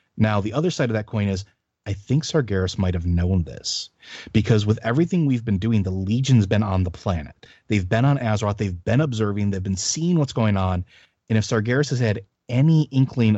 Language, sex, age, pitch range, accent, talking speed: English, male, 30-49, 100-125 Hz, American, 210 wpm